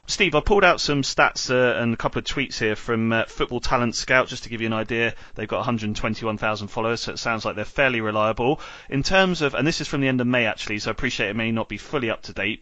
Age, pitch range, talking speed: 30-49, 115-135 Hz, 275 wpm